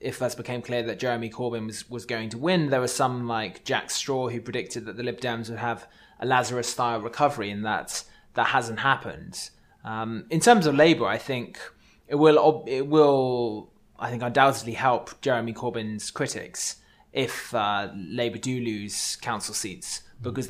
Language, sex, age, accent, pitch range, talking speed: English, male, 20-39, British, 110-125 Hz, 180 wpm